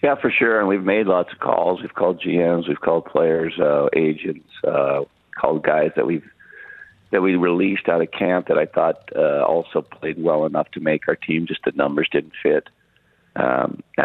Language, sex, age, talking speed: English, male, 50-69, 195 wpm